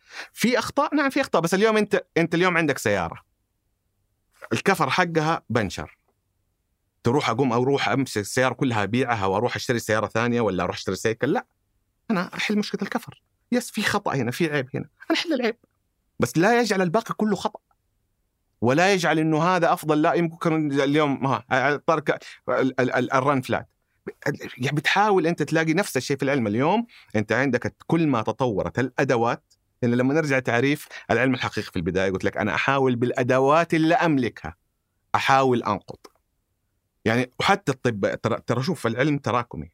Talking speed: 150 wpm